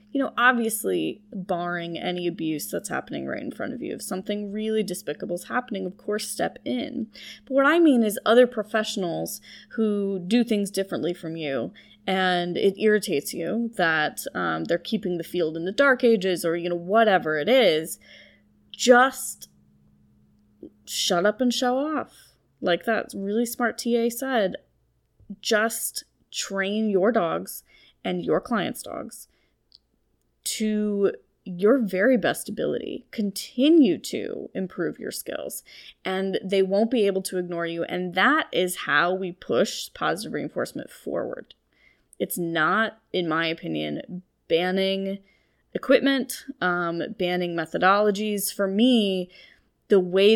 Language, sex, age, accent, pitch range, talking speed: English, female, 20-39, American, 175-230 Hz, 140 wpm